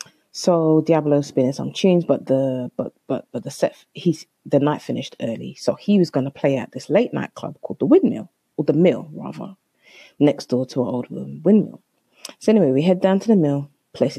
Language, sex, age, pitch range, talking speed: English, female, 30-49, 135-215 Hz, 220 wpm